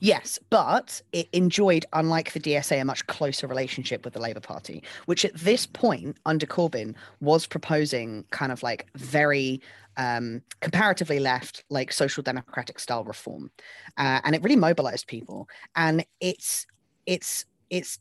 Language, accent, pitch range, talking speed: English, British, 130-175 Hz, 150 wpm